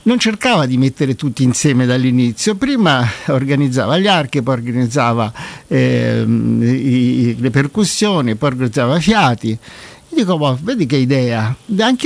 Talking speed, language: 145 wpm, Italian